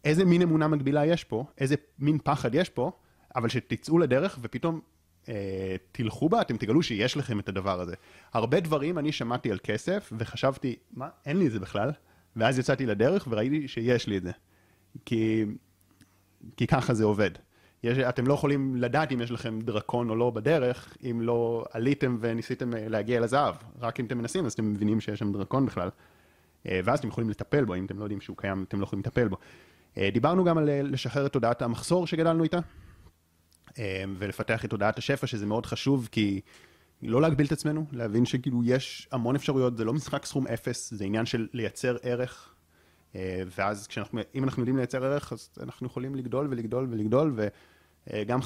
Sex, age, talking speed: male, 30-49, 175 wpm